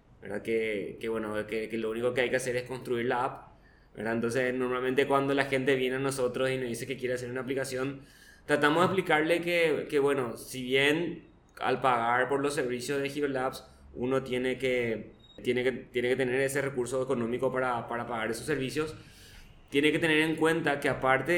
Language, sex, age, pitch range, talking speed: Spanish, male, 20-39, 120-135 Hz, 200 wpm